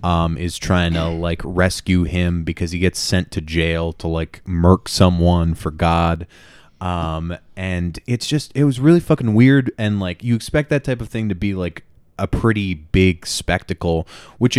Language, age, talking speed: English, 20-39, 180 wpm